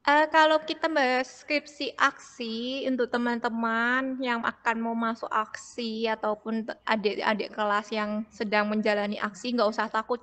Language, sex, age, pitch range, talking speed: Indonesian, female, 20-39, 220-250 Hz, 130 wpm